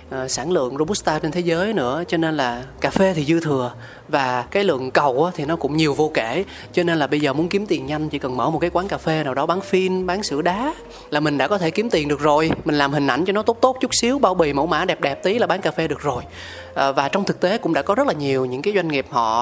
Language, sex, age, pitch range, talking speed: Vietnamese, male, 20-39, 135-185 Hz, 300 wpm